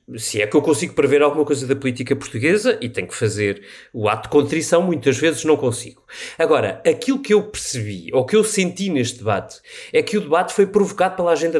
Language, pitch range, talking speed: Portuguese, 140-195 Hz, 215 wpm